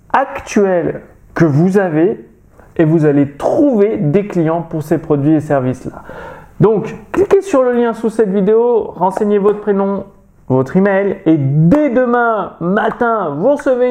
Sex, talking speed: male, 150 wpm